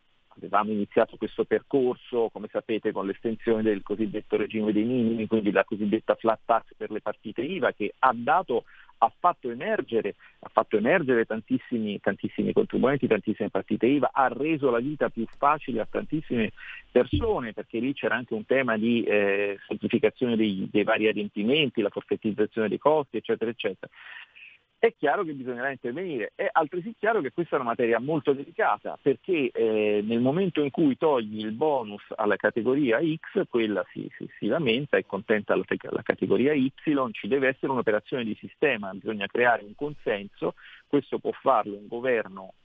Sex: male